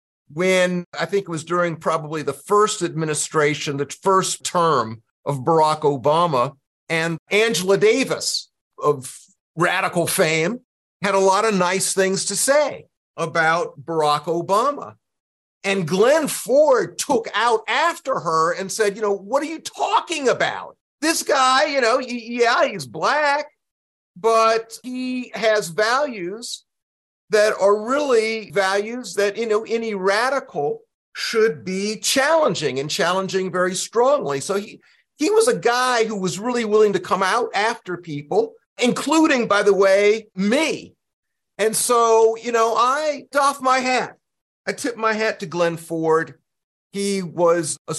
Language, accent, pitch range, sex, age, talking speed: English, American, 165-230 Hz, male, 50-69, 145 wpm